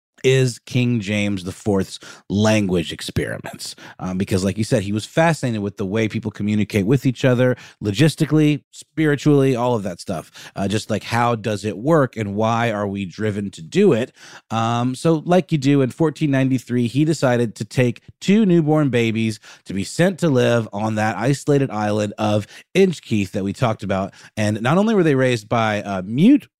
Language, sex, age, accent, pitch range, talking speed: English, male, 30-49, American, 105-140 Hz, 185 wpm